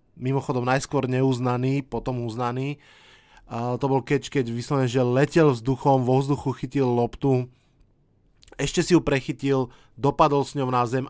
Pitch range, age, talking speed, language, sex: 120-140 Hz, 20-39, 145 wpm, Slovak, male